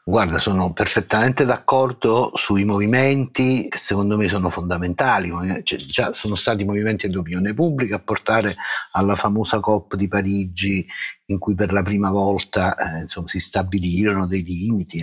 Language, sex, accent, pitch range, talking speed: Italian, male, native, 95-130 Hz, 150 wpm